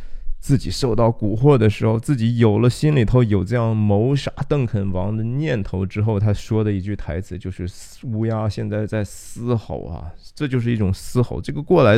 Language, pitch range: Chinese, 105-145 Hz